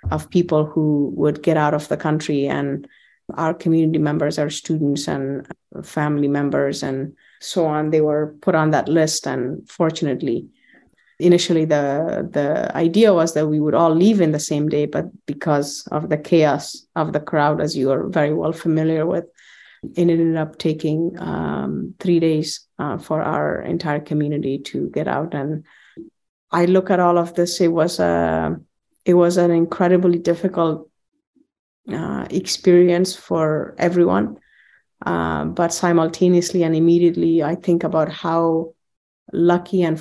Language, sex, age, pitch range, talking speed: English, female, 30-49, 150-175 Hz, 155 wpm